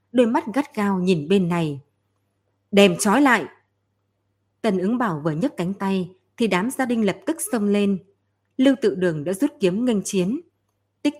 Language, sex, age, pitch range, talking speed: Vietnamese, female, 20-39, 160-220 Hz, 180 wpm